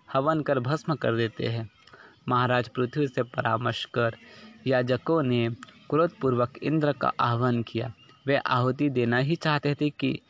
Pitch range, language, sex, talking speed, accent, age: 115-140 Hz, Hindi, male, 150 wpm, native, 20-39